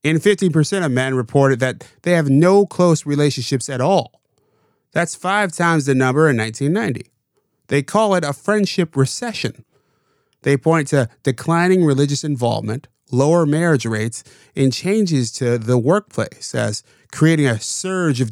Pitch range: 130-165 Hz